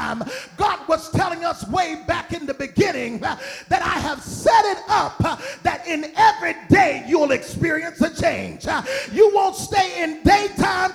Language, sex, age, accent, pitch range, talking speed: English, male, 40-59, American, 280-390 Hz, 170 wpm